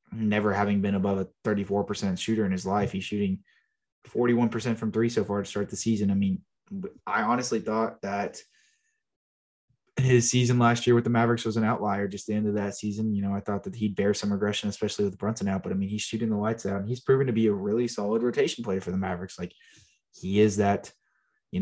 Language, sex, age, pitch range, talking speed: English, male, 20-39, 100-115 Hz, 230 wpm